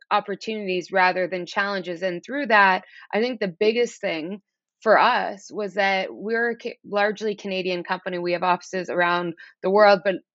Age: 20-39